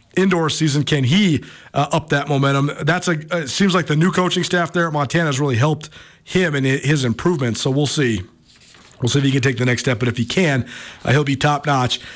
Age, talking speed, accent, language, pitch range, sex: 40-59, 235 wpm, American, English, 145-190 Hz, male